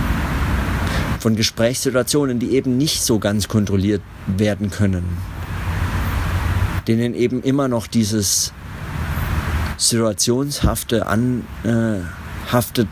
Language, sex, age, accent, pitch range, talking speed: German, male, 50-69, German, 90-115 Hz, 80 wpm